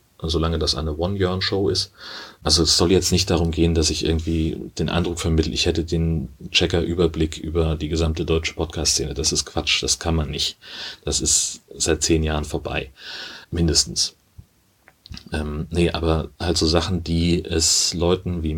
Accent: German